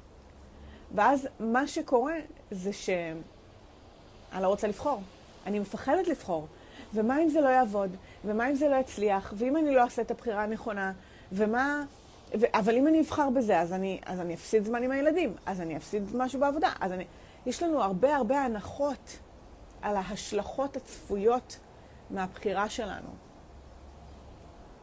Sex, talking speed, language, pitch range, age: female, 135 wpm, English, 175-255 Hz, 30-49